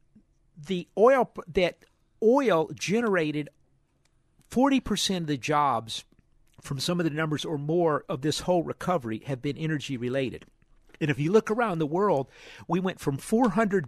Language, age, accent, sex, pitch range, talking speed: English, 50-69, American, male, 145-185 Hz, 150 wpm